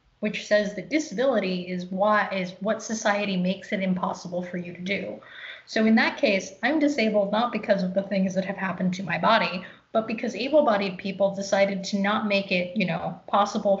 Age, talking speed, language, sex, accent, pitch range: 30-49, 195 wpm, English, female, American, 190-230 Hz